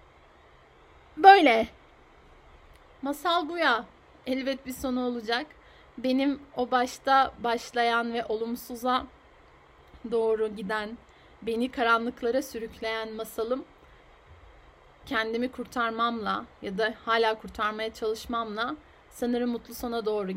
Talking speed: 90 wpm